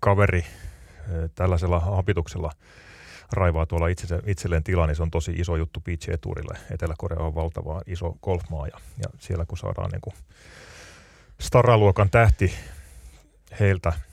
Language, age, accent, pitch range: Finnish, 30-49, native, 80-100 Hz